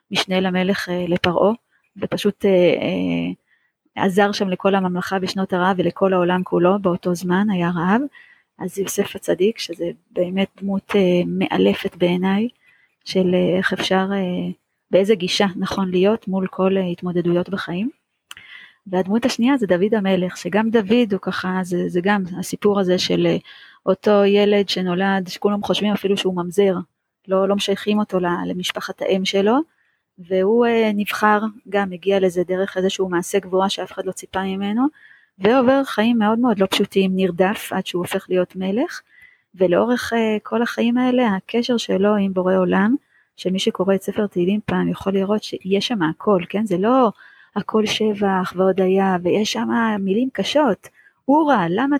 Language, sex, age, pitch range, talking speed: Hebrew, female, 30-49, 185-215 Hz, 155 wpm